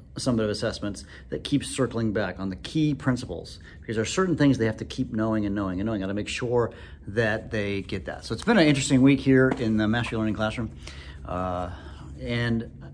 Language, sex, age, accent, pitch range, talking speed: English, male, 40-59, American, 95-120 Hz, 215 wpm